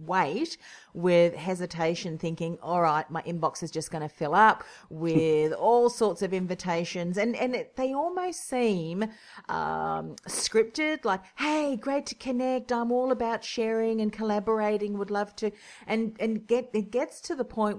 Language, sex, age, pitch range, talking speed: English, female, 40-59, 160-215 Hz, 160 wpm